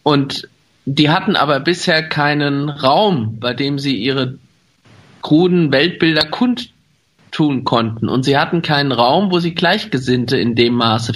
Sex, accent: male, German